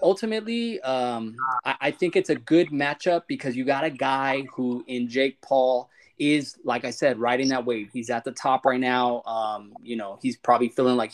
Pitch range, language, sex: 130-190 Hz, English, male